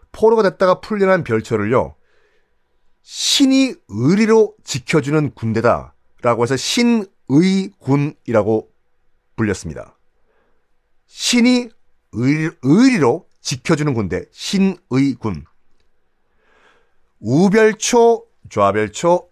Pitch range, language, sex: 105-175 Hz, Korean, male